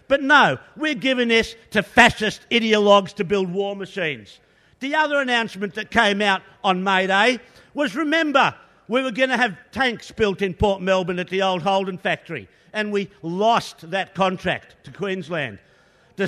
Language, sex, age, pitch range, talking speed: English, male, 50-69, 185-250 Hz, 170 wpm